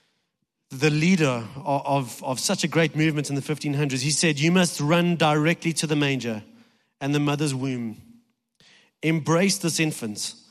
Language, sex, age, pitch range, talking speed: English, male, 30-49, 140-190 Hz, 160 wpm